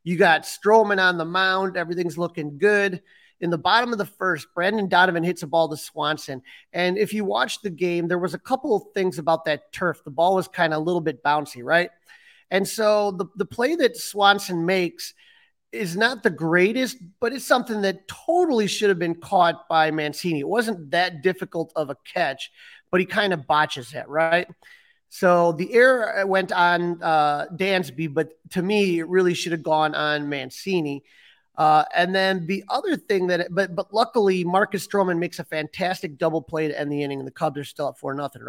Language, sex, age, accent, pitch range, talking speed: English, male, 30-49, American, 160-195 Hz, 205 wpm